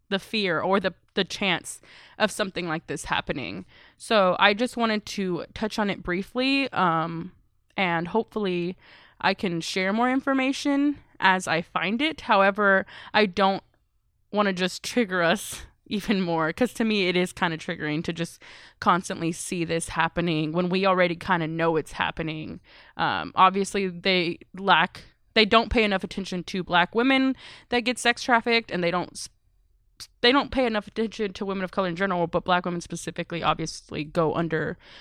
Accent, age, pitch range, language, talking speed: American, 20-39, 170-210 Hz, English, 175 wpm